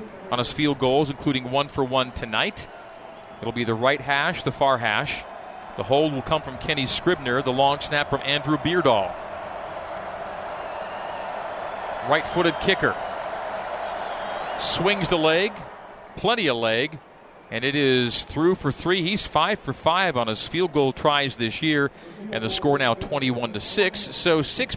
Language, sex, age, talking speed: English, male, 40-59, 155 wpm